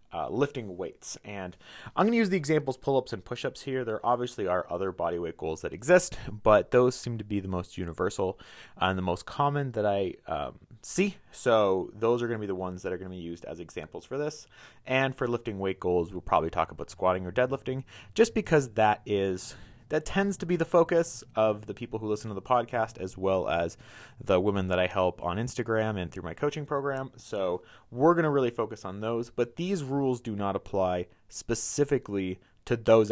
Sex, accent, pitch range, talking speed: male, American, 95-135 Hz, 215 wpm